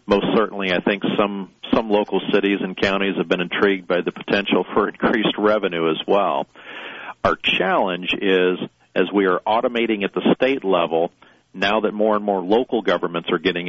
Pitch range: 90-105 Hz